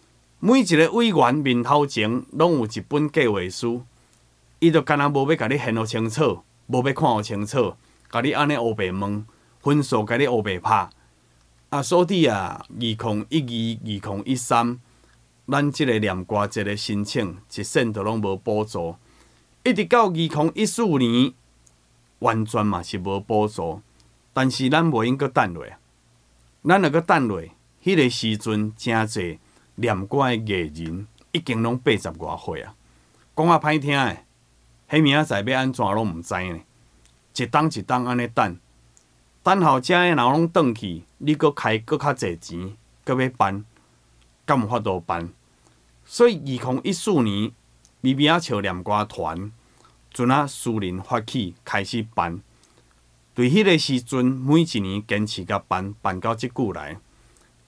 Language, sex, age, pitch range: Chinese, male, 30-49, 95-140 Hz